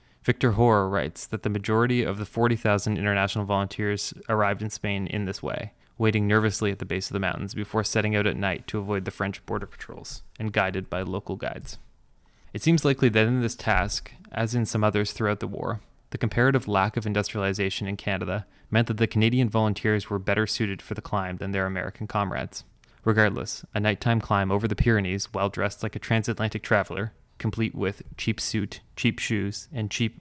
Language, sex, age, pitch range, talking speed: English, male, 20-39, 100-115 Hz, 195 wpm